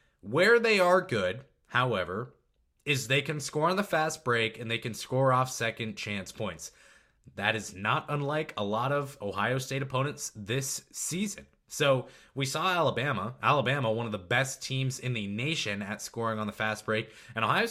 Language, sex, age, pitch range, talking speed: English, male, 20-39, 110-145 Hz, 185 wpm